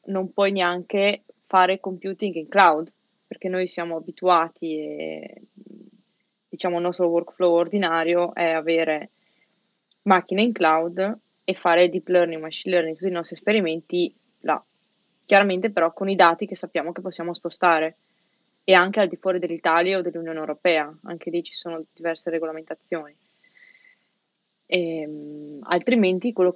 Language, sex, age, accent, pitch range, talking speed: Italian, female, 20-39, native, 165-200 Hz, 135 wpm